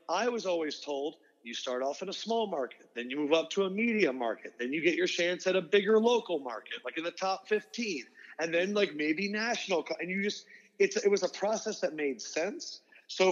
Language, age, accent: English, 30-49, American